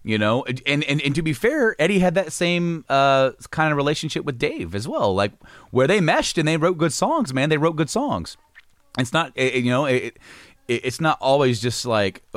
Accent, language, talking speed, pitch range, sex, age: American, English, 225 wpm, 100-130 Hz, male, 30-49